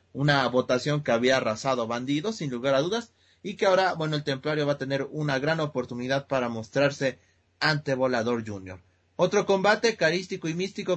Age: 30-49